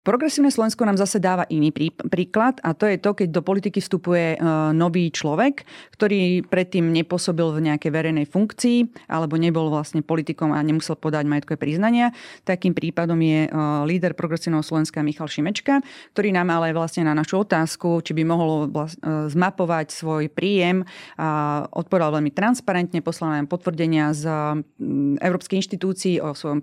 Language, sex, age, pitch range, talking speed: Slovak, female, 30-49, 155-180 Hz, 150 wpm